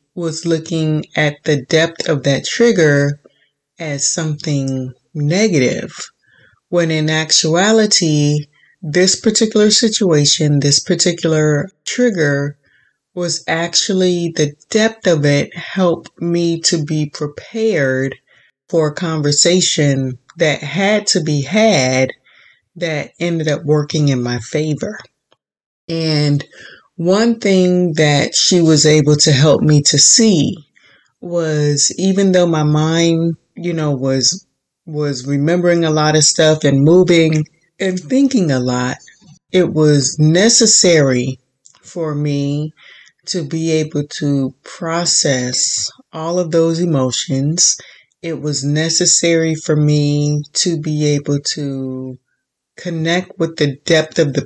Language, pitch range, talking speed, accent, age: English, 145-175 Hz, 120 wpm, American, 30-49